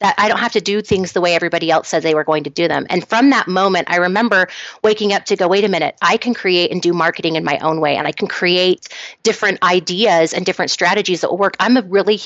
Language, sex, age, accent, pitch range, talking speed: English, female, 30-49, American, 180-210 Hz, 275 wpm